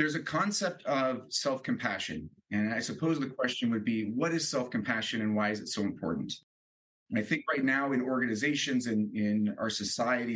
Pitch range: 105-125 Hz